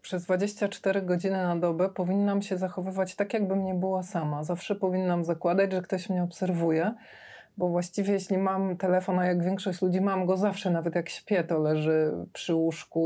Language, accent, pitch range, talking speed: Polish, native, 175-210 Hz, 180 wpm